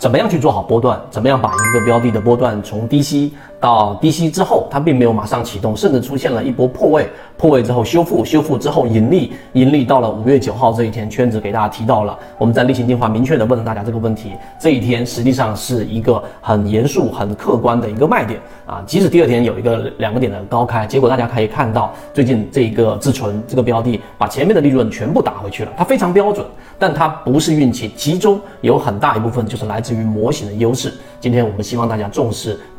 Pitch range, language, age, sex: 110-135 Hz, Chinese, 40-59, male